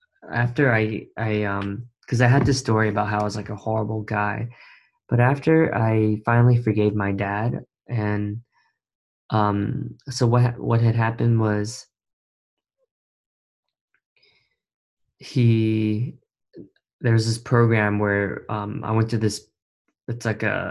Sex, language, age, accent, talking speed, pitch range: male, English, 20-39, American, 125 wpm, 105-125 Hz